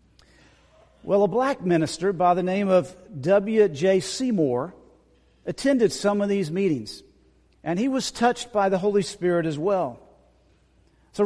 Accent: American